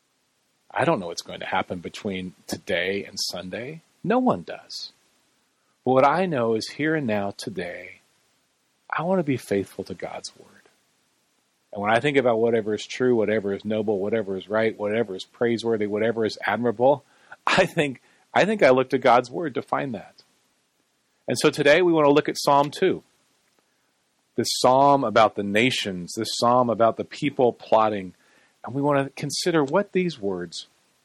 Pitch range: 105-135 Hz